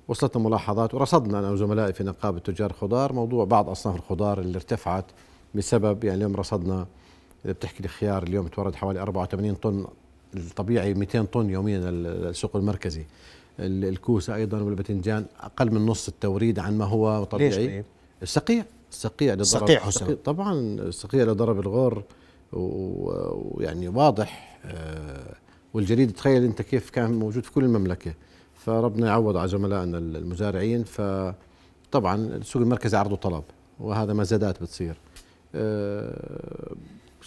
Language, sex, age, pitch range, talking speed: Arabic, male, 50-69, 95-115 Hz, 125 wpm